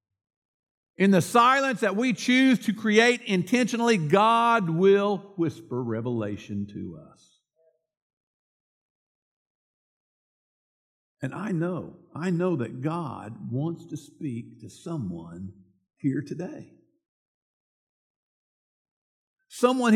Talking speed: 90 wpm